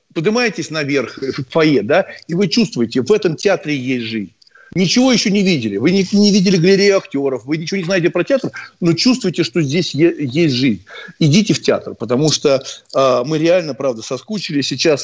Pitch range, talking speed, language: 125-185 Hz, 180 wpm, Russian